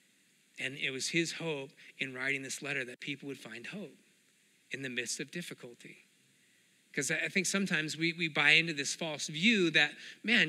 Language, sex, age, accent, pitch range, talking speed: English, male, 30-49, American, 135-180 Hz, 185 wpm